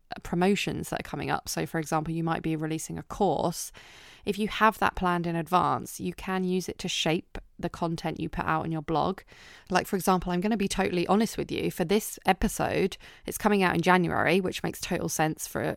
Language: English